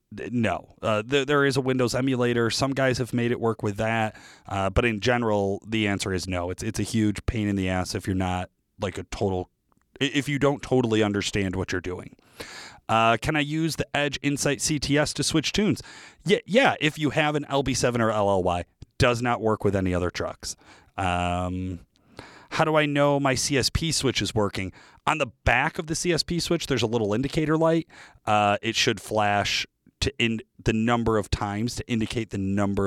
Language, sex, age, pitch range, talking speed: English, male, 30-49, 100-135 Hz, 200 wpm